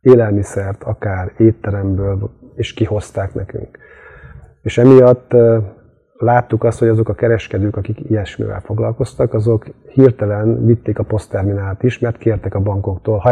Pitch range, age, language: 100-115 Hz, 30-49, Hungarian